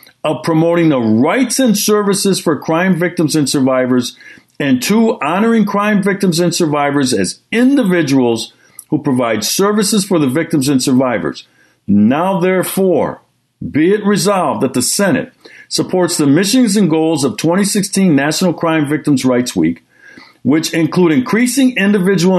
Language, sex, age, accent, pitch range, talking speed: English, male, 50-69, American, 130-200 Hz, 140 wpm